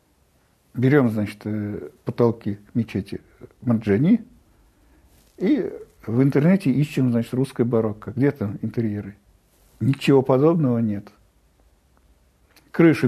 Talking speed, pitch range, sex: 85 wpm, 110-165 Hz, male